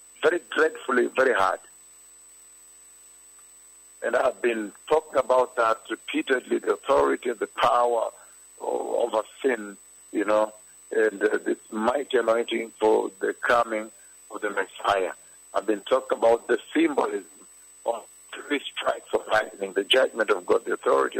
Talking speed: 135 wpm